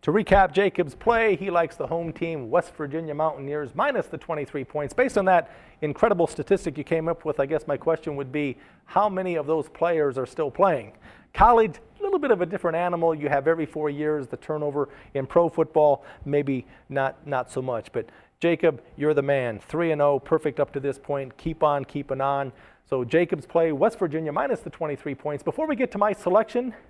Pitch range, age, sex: 145-180 Hz, 40-59, male